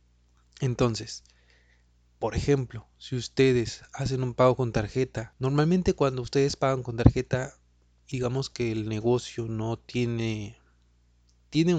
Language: Spanish